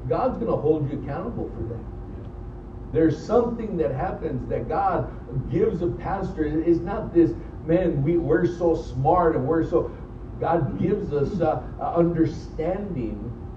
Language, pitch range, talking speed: English, 115-155 Hz, 140 wpm